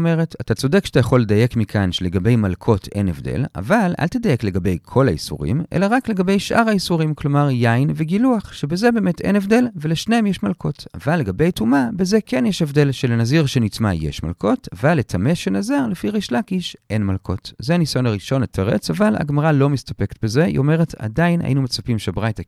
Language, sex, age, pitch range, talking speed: Hebrew, male, 40-59, 115-190 Hz, 175 wpm